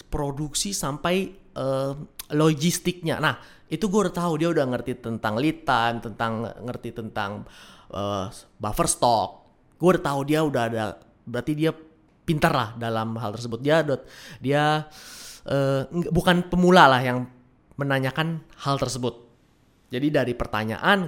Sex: male